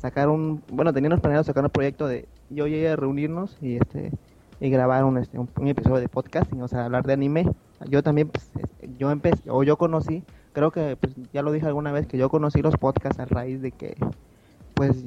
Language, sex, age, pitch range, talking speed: Spanish, male, 20-39, 130-150 Hz, 225 wpm